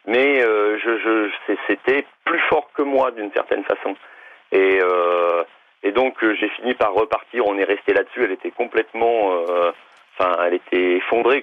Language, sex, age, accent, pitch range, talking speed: French, male, 40-59, French, 95-115 Hz, 170 wpm